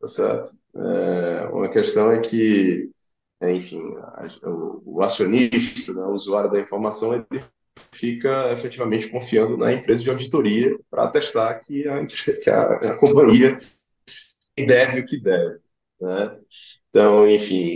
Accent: Brazilian